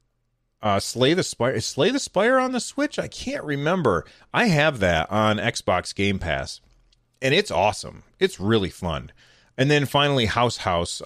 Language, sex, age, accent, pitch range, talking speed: English, male, 30-49, American, 100-120 Hz, 175 wpm